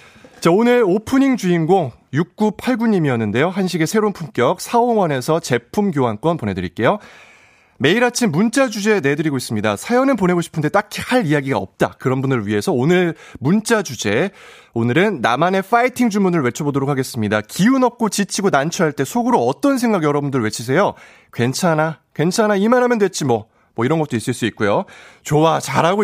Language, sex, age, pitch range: Korean, male, 30-49, 120-195 Hz